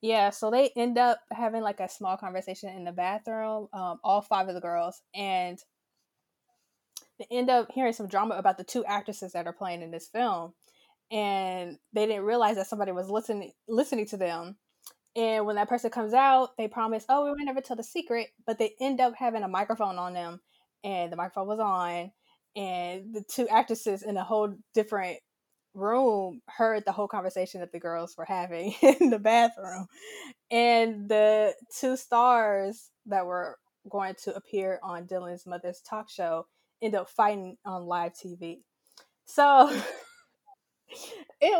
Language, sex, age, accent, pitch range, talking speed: English, female, 20-39, American, 185-235 Hz, 170 wpm